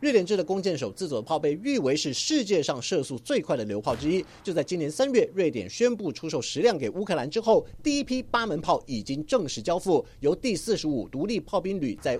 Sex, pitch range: male, 145-235 Hz